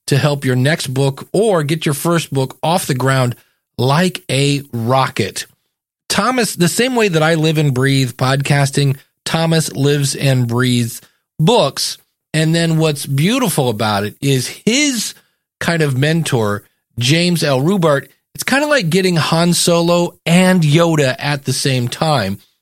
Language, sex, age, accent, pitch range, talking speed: English, male, 40-59, American, 130-165 Hz, 155 wpm